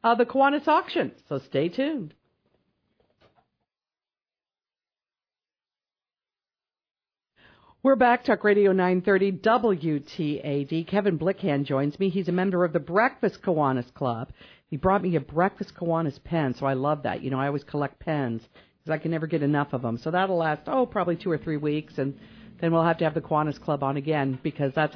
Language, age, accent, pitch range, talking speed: English, 50-69, American, 155-225 Hz, 175 wpm